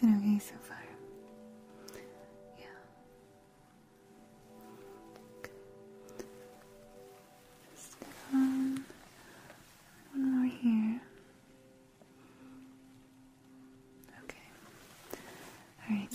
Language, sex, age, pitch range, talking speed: English, female, 20-39, 205-225 Hz, 50 wpm